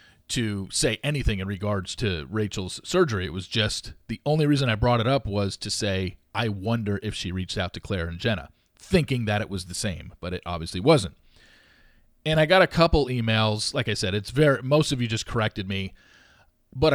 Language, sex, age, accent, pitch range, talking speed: English, male, 40-59, American, 100-130 Hz, 210 wpm